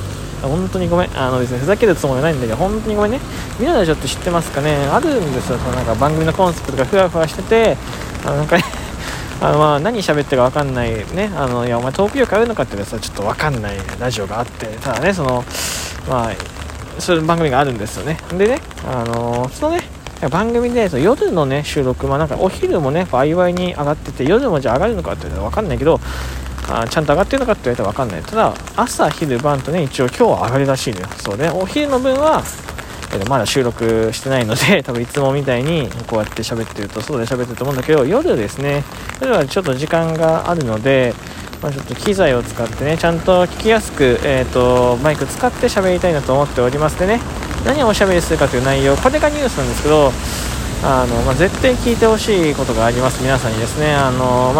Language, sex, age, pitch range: Japanese, male, 20-39, 120-170 Hz